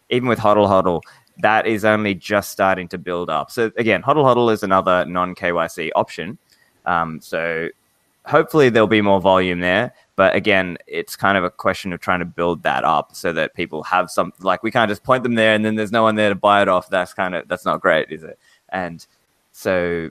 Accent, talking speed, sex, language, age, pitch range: Australian, 220 wpm, male, English, 20-39, 95-110 Hz